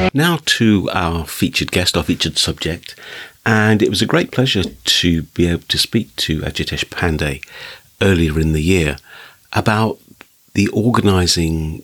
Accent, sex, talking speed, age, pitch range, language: British, male, 145 wpm, 50-69, 85-105 Hz, English